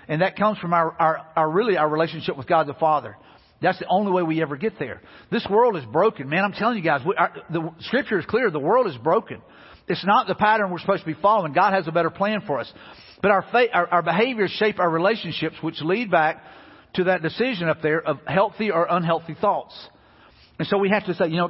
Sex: male